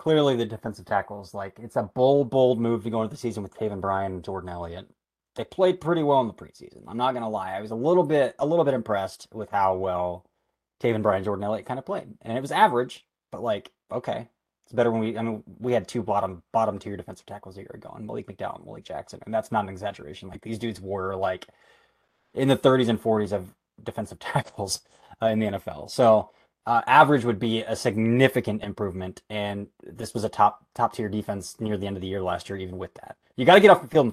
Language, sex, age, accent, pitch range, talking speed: English, male, 20-39, American, 100-125 Hz, 250 wpm